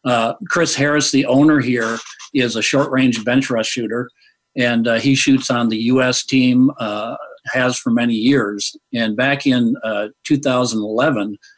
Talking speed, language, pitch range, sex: 150 wpm, English, 110-140 Hz, male